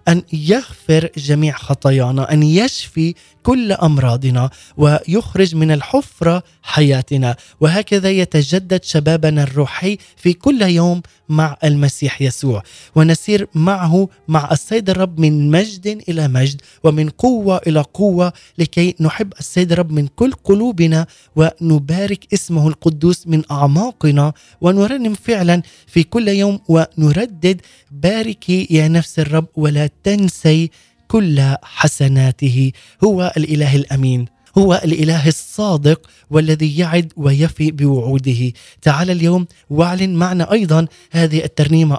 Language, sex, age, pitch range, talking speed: Arabic, male, 20-39, 150-180 Hz, 110 wpm